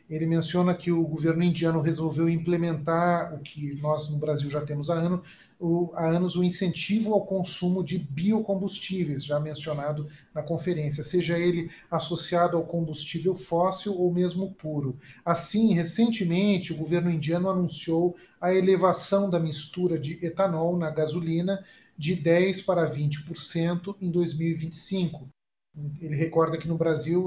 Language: Portuguese